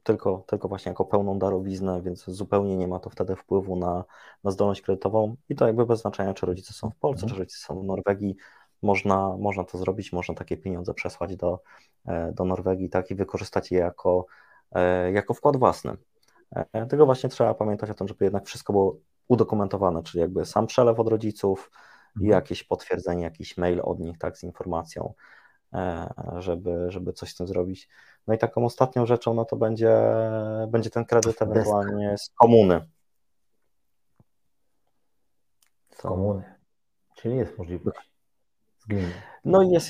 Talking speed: 160 wpm